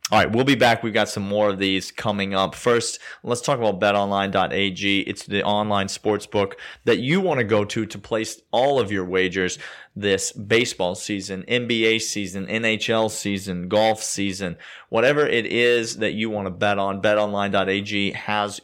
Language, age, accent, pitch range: English, 30-49, American, 100-115 Hz